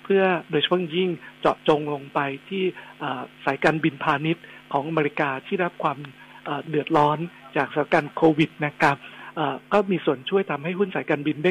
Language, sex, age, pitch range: Thai, male, 60-79, 150-180 Hz